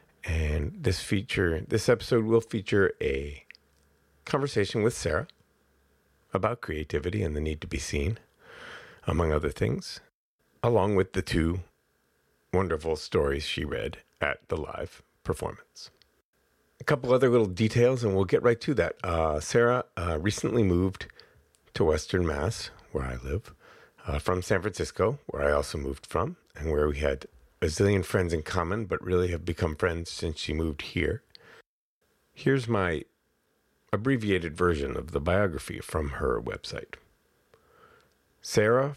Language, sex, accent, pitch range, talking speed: English, male, American, 80-115 Hz, 145 wpm